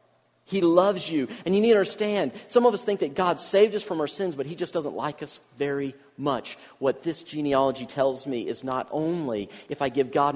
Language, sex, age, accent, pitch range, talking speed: English, male, 40-59, American, 135-180 Hz, 225 wpm